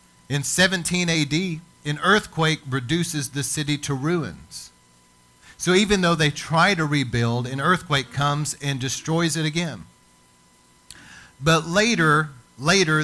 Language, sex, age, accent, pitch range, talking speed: English, male, 40-59, American, 120-155 Hz, 125 wpm